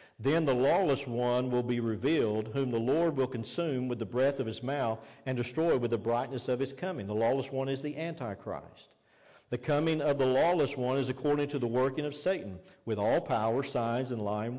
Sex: male